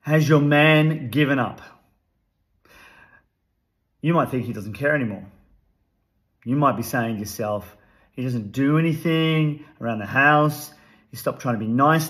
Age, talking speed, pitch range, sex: 40-59, 155 wpm, 110-150 Hz, male